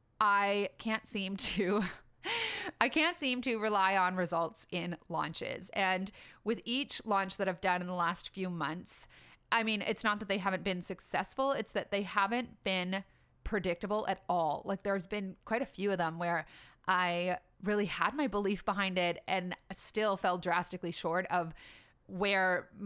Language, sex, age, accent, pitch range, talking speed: English, female, 30-49, American, 180-215 Hz, 170 wpm